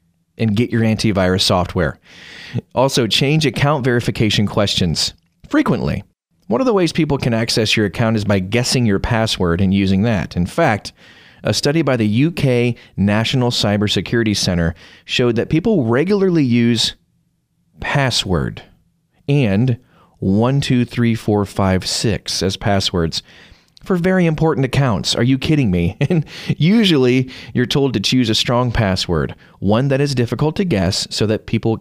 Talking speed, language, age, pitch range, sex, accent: 140 wpm, English, 30-49, 100-135 Hz, male, American